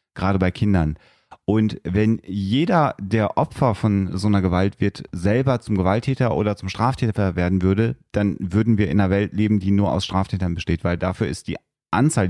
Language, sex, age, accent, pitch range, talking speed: German, male, 40-59, German, 95-115 Hz, 185 wpm